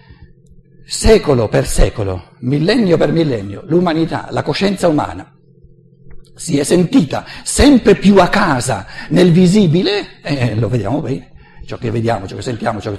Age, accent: 60-79, native